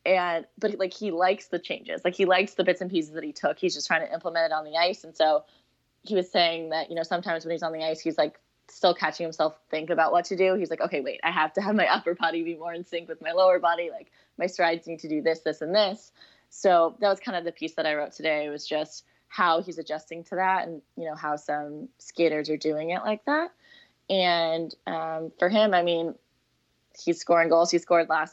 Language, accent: English, American